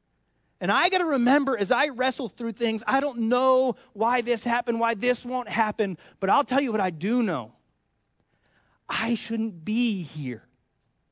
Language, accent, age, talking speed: English, American, 30-49, 175 wpm